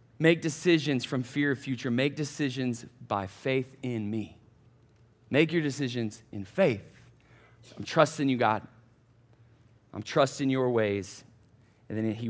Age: 30-49